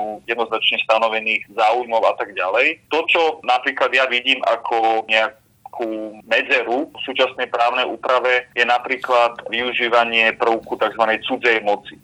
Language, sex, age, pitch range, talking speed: Slovak, male, 30-49, 110-120 Hz, 130 wpm